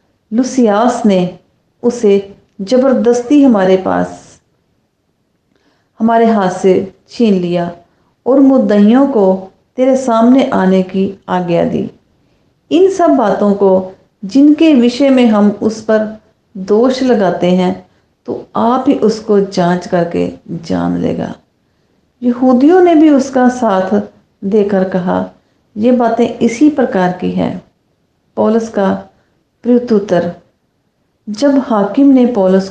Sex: female